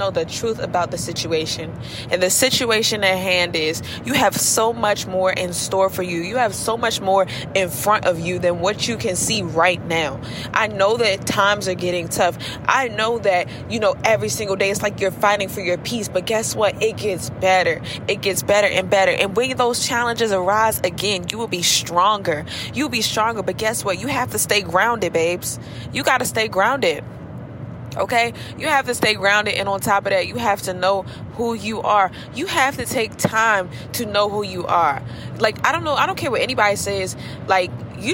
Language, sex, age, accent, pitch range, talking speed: English, female, 20-39, American, 175-225 Hz, 215 wpm